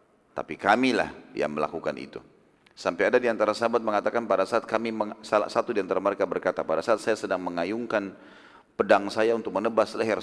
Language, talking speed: Indonesian, 170 wpm